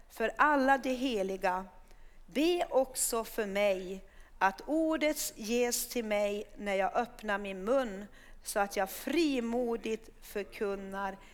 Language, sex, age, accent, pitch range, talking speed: Swedish, female, 40-59, native, 205-275 Hz, 120 wpm